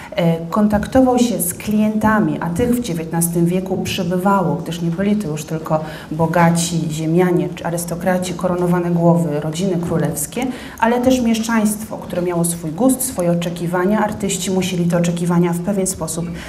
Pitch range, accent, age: 165-200 Hz, native, 30-49